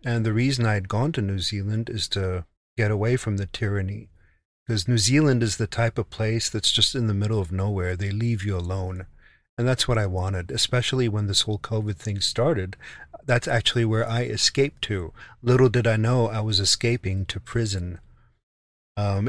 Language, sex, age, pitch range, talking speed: English, male, 40-59, 100-125 Hz, 195 wpm